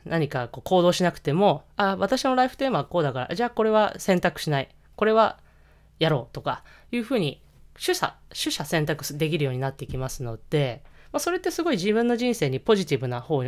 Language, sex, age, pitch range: Japanese, female, 20-39, 145-220 Hz